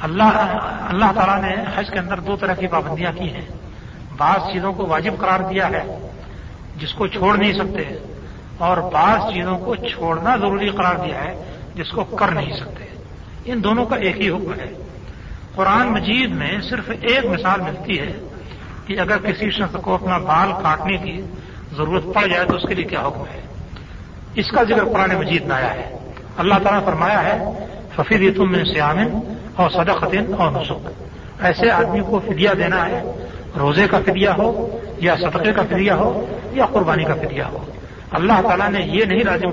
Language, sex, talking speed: Urdu, male, 180 wpm